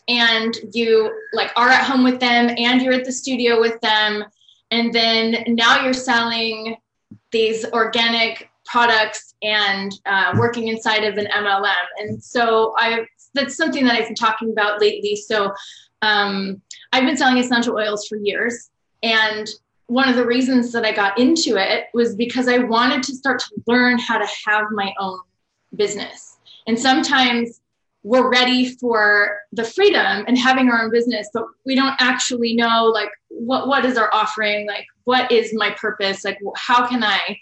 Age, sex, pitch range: 20-39, female, 210-250 Hz